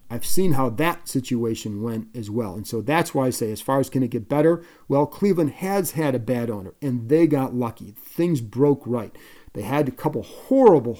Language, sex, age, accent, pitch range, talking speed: English, male, 40-59, American, 125-155 Hz, 220 wpm